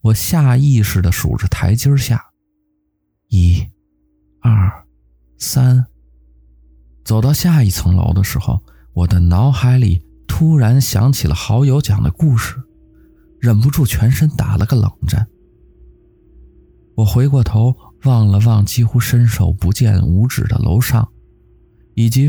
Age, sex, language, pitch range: 20-39, male, Chinese, 90-125 Hz